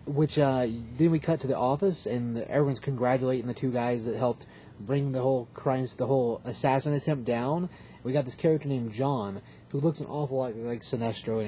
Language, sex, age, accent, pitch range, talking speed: English, male, 30-49, American, 115-140 Hz, 215 wpm